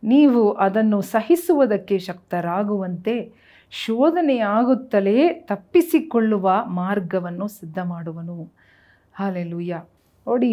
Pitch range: 180-225 Hz